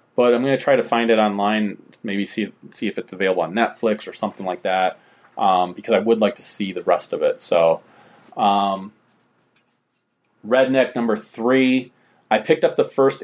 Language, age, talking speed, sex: English, 30-49, 190 wpm, male